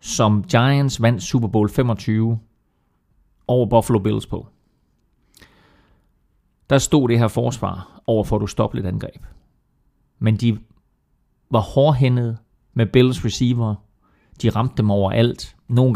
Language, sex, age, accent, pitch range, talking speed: Danish, male, 30-49, native, 105-125 Hz, 120 wpm